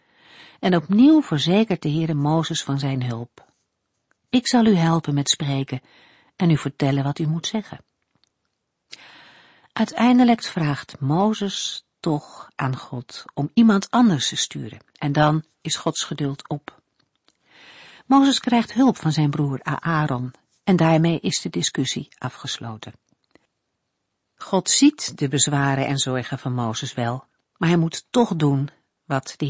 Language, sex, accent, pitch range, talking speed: Dutch, female, Dutch, 140-205 Hz, 140 wpm